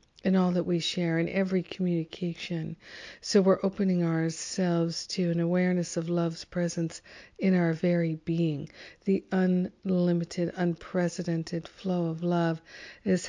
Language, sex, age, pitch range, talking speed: English, female, 50-69, 165-185 Hz, 130 wpm